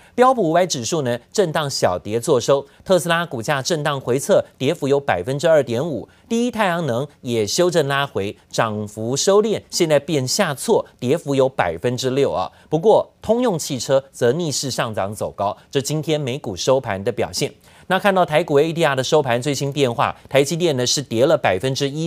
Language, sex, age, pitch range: Chinese, male, 30-49, 125-170 Hz